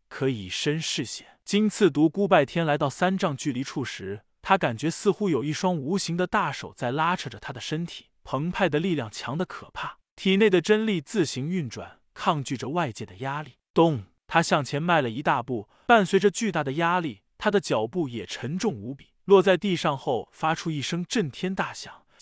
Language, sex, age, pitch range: Chinese, male, 20-39, 140-195 Hz